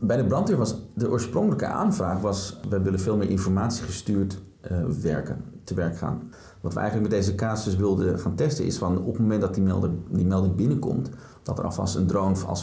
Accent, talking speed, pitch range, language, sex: Dutch, 215 wpm, 90-100 Hz, Dutch, male